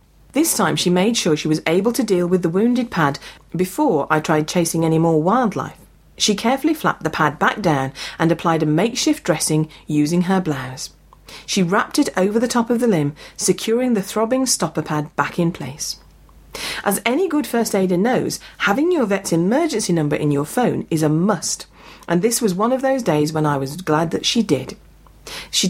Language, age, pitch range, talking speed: English, 40-59, 155-230 Hz, 200 wpm